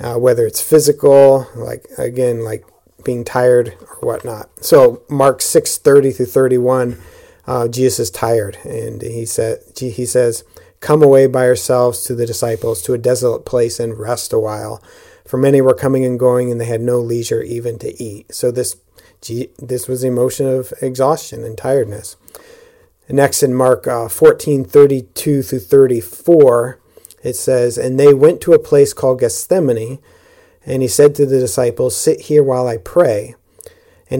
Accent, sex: American, male